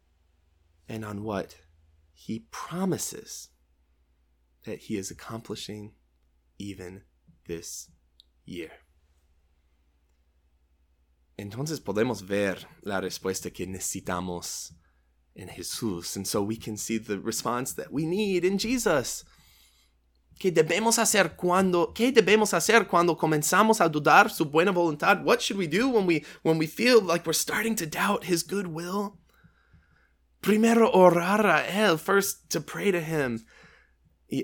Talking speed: 125 wpm